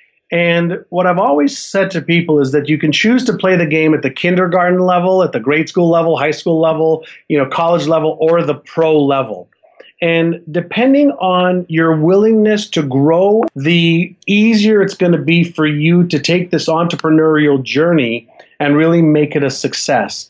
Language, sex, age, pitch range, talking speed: English, male, 40-59, 150-185 Hz, 185 wpm